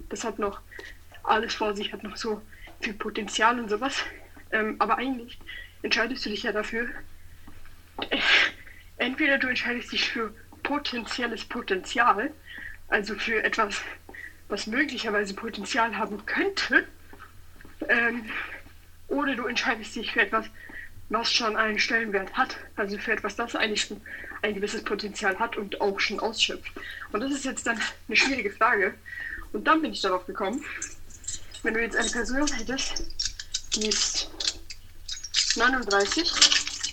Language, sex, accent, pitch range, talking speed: German, female, German, 205-245 Hz, 140 wpm